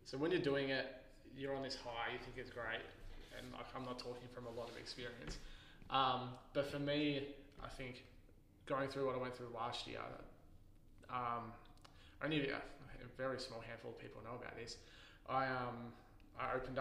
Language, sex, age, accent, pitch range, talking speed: English, male, 20-39, Australian, 115-125 Hz, 190 wpm